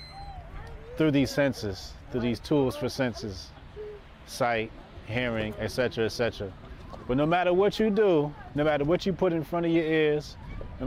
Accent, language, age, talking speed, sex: American, English, 30-49, 160 wpm, male